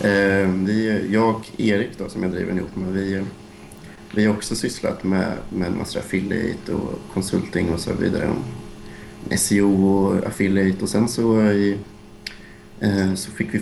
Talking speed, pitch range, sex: 150 wpm, 95-110 Hz, male